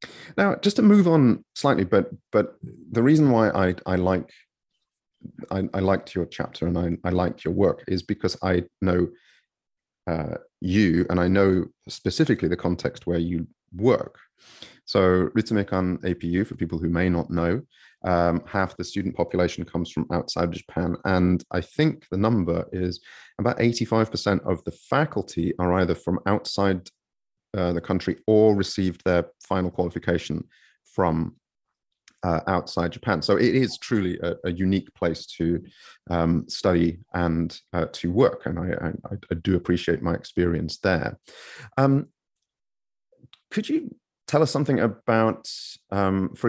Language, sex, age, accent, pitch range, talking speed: English, male, 30-49, British, 85-110 Hz, 155 wpm